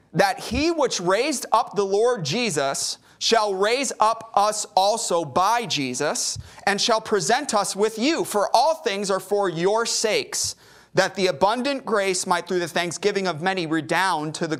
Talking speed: 170 wpm